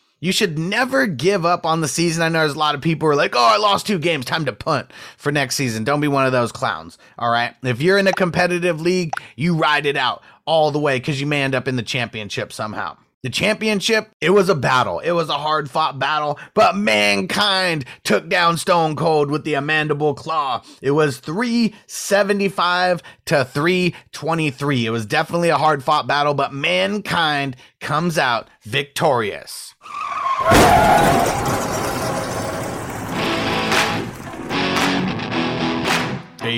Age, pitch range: 30-49, 130-175 Hz